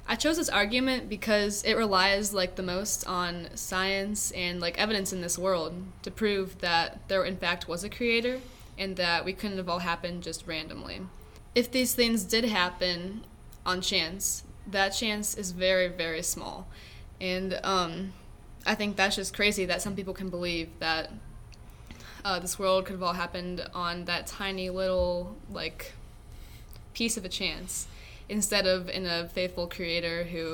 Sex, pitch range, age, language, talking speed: female, 175-205 Hz, 20-39, English, 165 wpm